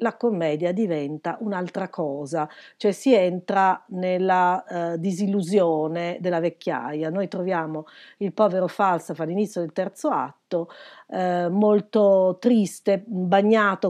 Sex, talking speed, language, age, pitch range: female, 110 wpm, Italian, 40-59, 160-205 Hz